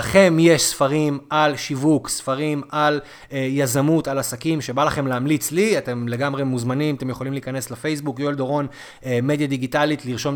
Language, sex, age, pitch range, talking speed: Hebrew, male, 30-49, 130-170 Hz, 150 wpm